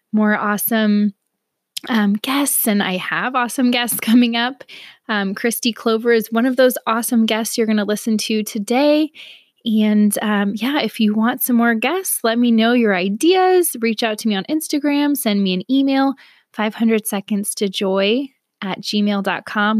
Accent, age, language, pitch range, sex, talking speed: American, 20-39, English, 205-245 Hz, female, 170 wpm